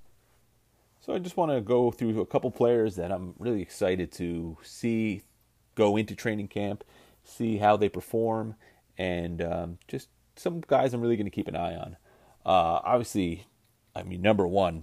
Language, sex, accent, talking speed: English, male, American, 175 wpm